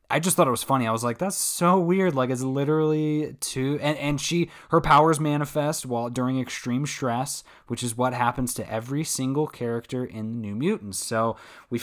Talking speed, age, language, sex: 205 wpm, 20-39, English, male